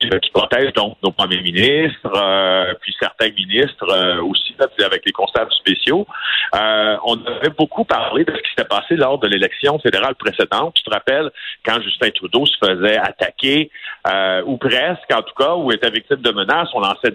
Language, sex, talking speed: French, male, 185 wpm